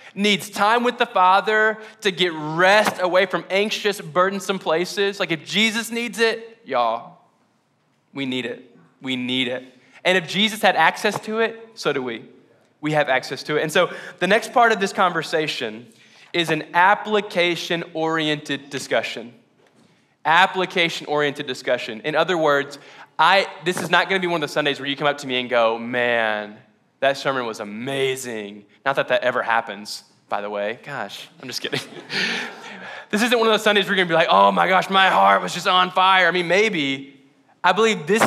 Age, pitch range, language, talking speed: 10-29, 135-195 Hz, English, 190 wpm